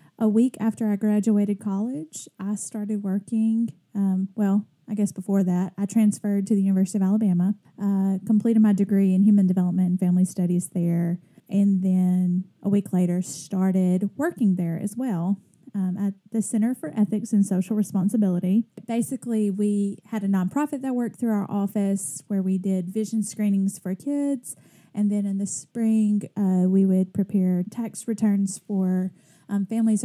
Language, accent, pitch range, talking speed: English, American, 185-220 Hz, 165 wpm